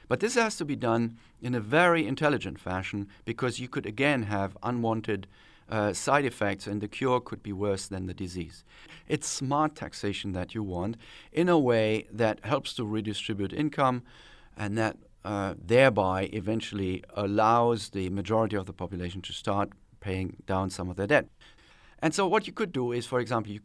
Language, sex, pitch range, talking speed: English, male, 100-125 Hz, 185 wpm